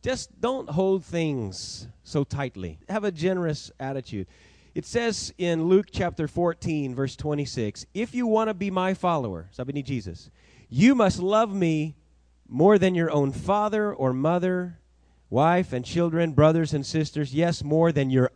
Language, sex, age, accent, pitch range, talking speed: English, male, 30-49, American, 125-180 Hz, 155 wpm